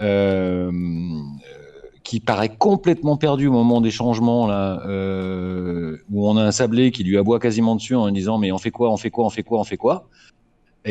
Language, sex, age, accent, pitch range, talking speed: French, male, 40-59, French, 95-125 Hz, 215 wpm